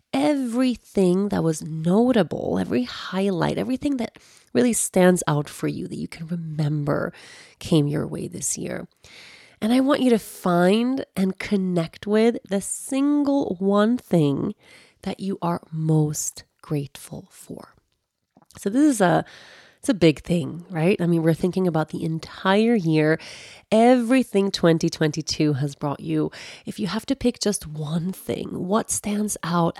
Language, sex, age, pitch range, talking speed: English, female, 30-49, 170-220 Hz, 150 wpm